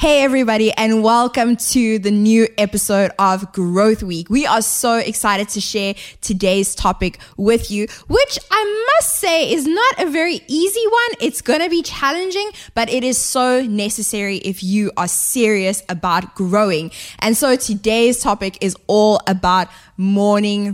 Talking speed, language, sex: 160 wpm, English, female